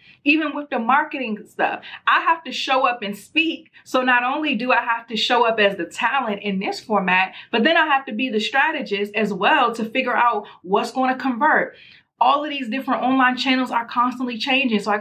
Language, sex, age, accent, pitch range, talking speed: English, female, 30-49, American, 200-255 Hz, 220 wpm